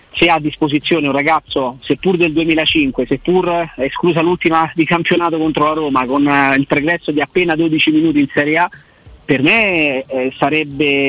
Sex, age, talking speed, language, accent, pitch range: male, 30-49, 175 wpm, Italian, native, 140-165 Hz